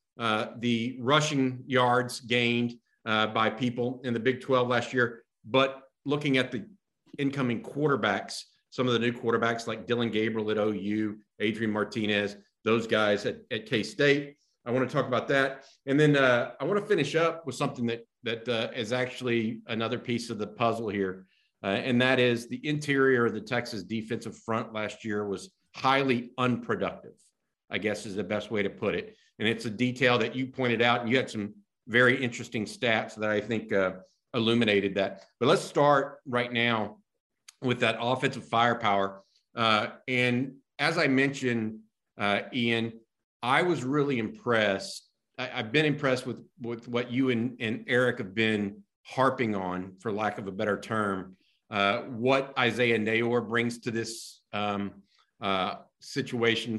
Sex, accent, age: male, American, 50-69